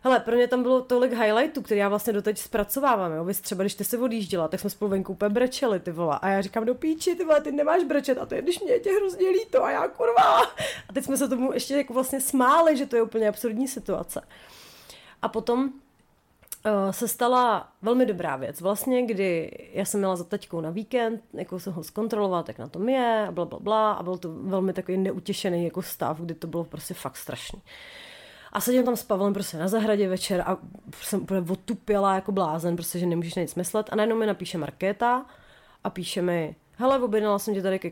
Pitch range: 185-245 Hz